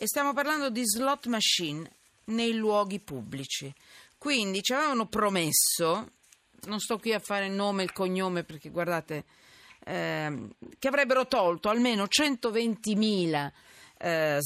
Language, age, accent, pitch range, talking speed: Italian, 40-59, native, 165-235 Hz, 125 wpm